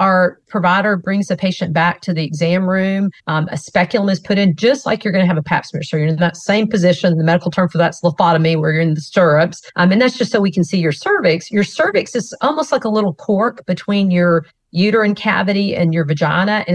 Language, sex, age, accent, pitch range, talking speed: English, female, 40-59, American, 175-205 Hz, 245 wpm